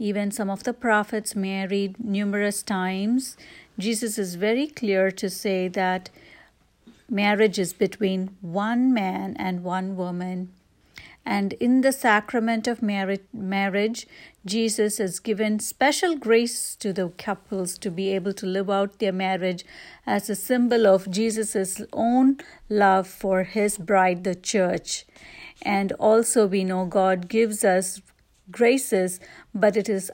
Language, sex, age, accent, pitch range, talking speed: English, female, 60-79, Indian, 185-220 Hz, 135 wpm